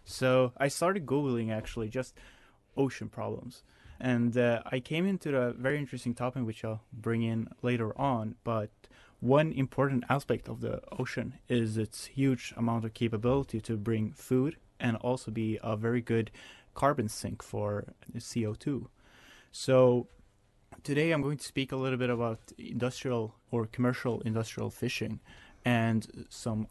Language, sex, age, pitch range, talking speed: English, male, 20-39, 110-130 Hz, 150 wpm